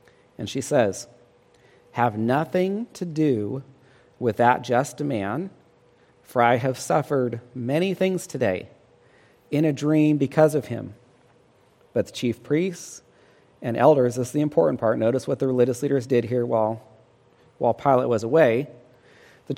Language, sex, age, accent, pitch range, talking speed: English, male, 40-59, American, 120-145 Hz, 145 wpm